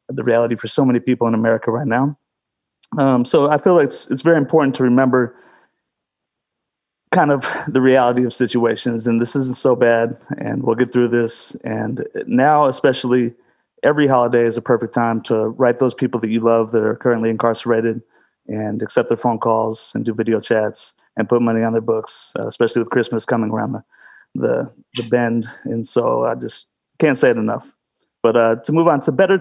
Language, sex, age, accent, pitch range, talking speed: English, male, 30-49, American, 120-160 Hz, 200 wpm